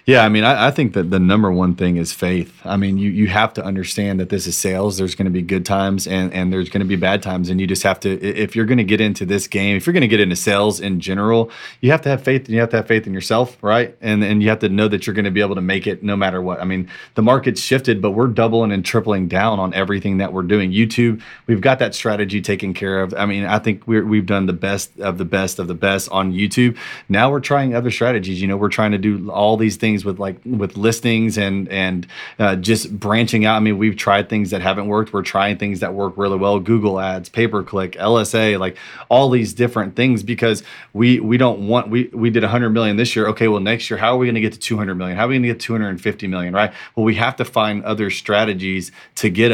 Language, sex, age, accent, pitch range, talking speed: English, male, 30-49, American, 95-115 Hz, 275 wpm